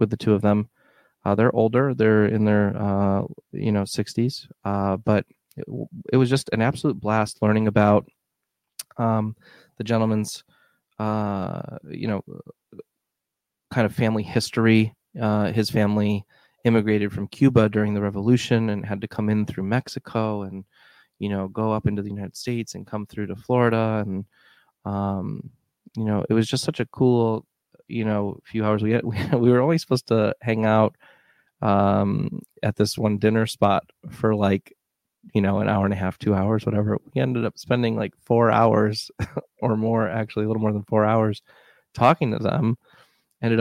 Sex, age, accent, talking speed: male, 20-39, American, 180 wpm